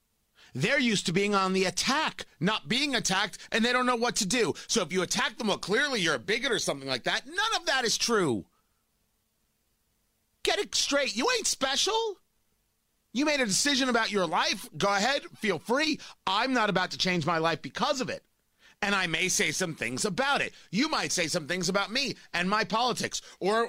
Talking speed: 210 wpm